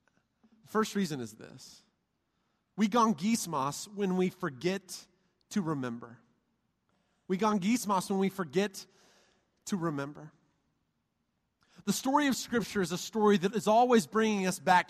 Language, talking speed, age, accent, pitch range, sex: English, 130 wpm, 30-49, American, 185-265 Hz, male